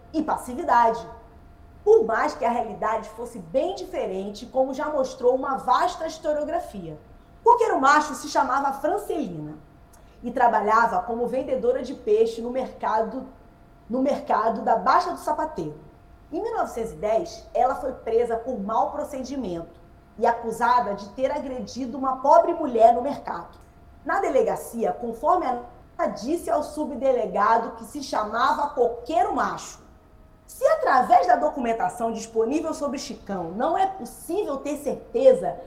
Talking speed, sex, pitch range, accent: 130 wpm, female, 235-335 Hz, Brazilian